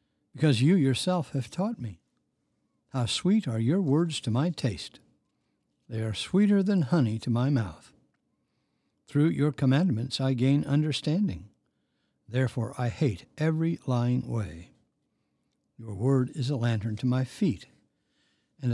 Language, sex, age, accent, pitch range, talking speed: English, male, 60-79, American, 115-155 Hz, 140 wpm